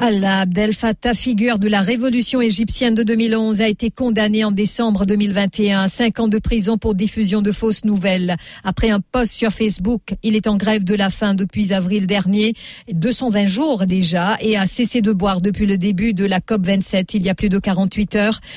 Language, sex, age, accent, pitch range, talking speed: English, female, 50-69, French, 185-215 Hz, 205 wpm